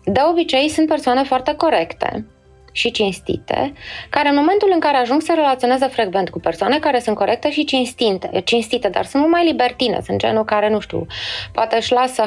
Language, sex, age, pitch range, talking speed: Romanian, female, 20-39, 185-255 Hz, 175 wpm